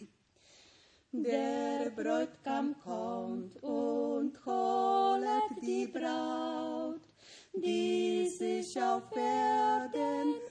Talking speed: 65 wpm